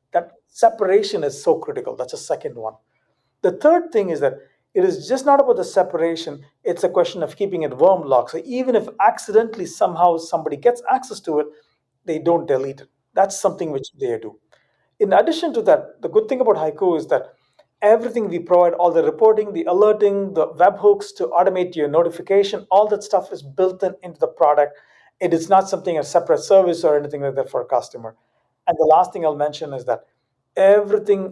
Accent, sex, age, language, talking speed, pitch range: Indian, male, 50-69, English, 200 wpm, 140-230 Hz